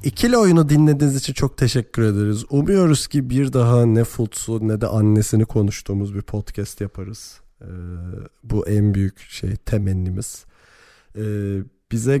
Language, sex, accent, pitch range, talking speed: Turkish, male, native, 105-125 Hz, 140 wpm